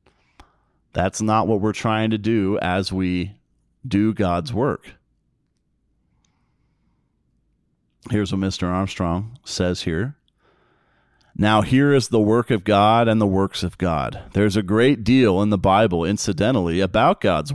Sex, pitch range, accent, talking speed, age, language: male, 95-120 Hz, American, 135 wpm, 40-59, English